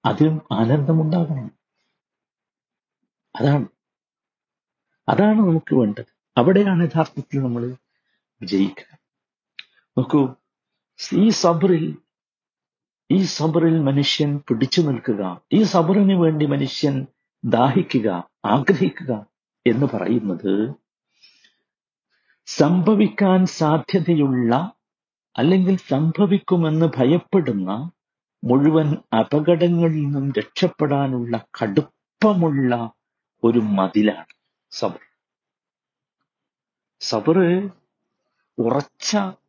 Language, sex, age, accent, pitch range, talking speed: Malayalam, male, 60-79, native, 125-175 Hz, 60 wpm